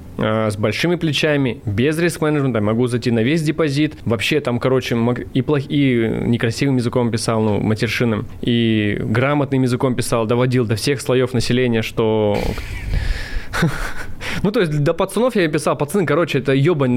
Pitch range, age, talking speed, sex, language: 120-155 Hz, 20-39, 150 wpm, male, Russian